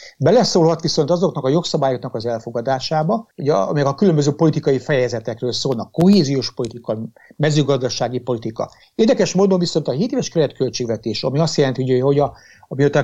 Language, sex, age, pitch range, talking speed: Hungarian, male, 60-79, 125-165 Hz, 145 wpm